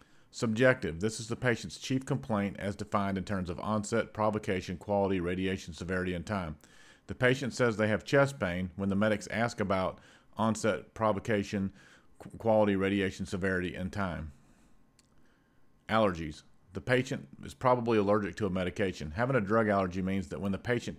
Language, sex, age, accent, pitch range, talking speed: English, male, 40-59, American, 95-110 Hz, 160 wpm